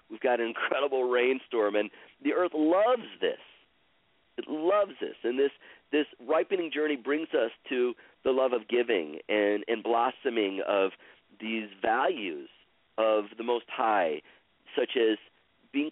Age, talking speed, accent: 40-59, 145 wpm, American